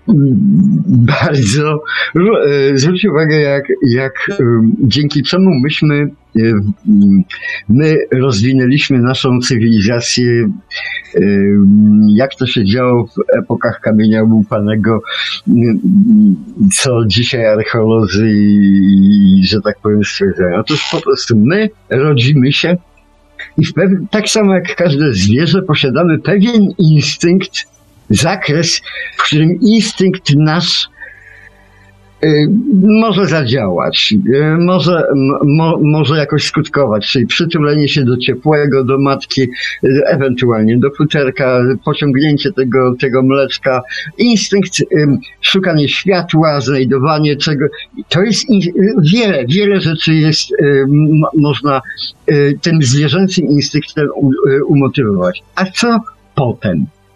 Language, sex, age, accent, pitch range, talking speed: Polish, male, 50-69, native, 125-175 Hz, 95 wpm